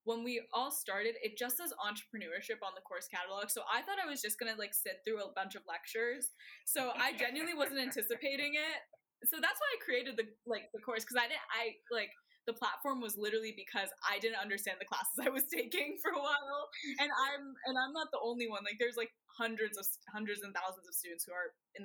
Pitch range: 195-265 Hz